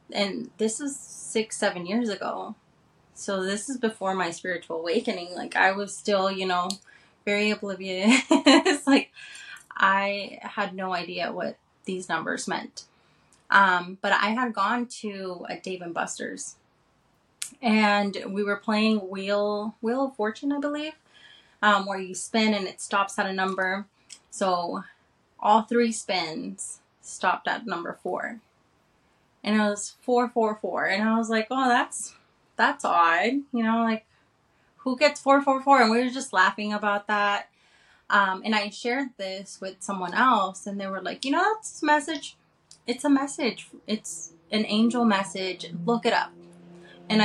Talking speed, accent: 160 wpm, American